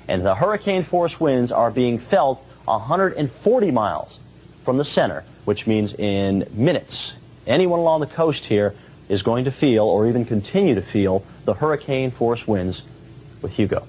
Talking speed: 150 wpm